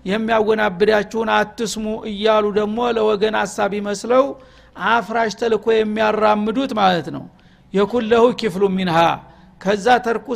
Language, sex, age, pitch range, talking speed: Amharic, male, 50-69, 205-230 Hz, 100 wpm